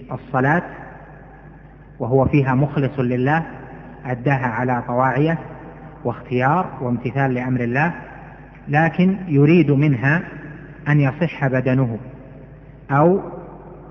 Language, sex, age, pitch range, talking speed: Arabic, male, 30-49, 135-155 Hz, 80 wpm